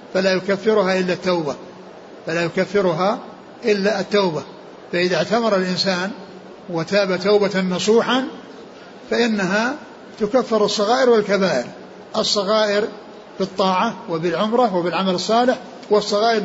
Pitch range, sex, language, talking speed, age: 185-225 Hz, male, Arabic, 90 wpm, 60-79